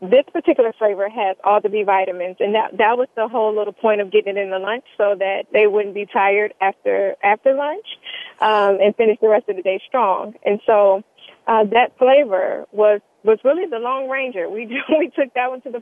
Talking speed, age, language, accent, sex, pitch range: 220 wpm, 20-39, English, American, female, 210-300 Hz